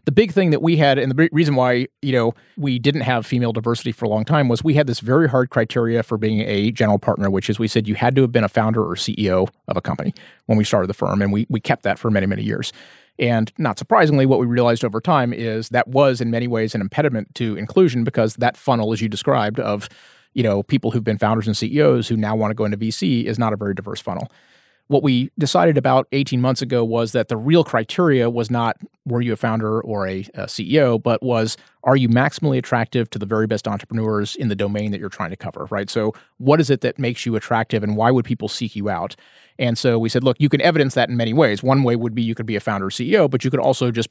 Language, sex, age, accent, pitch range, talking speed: English, male, 30-49, American, 110-130 Hz, 265 wpm